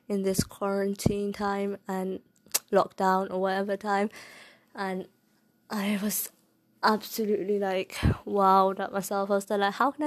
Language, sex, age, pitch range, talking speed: Urdu, female, 20-39, 195-215 Hz, 130 wpm